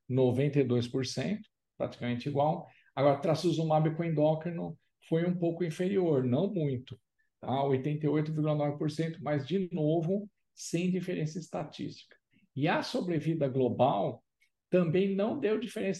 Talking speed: 100 wpm